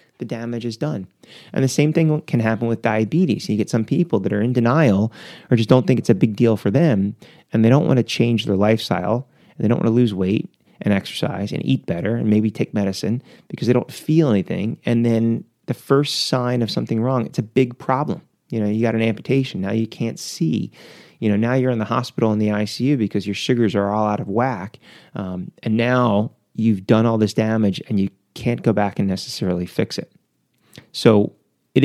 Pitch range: 105-125 Hz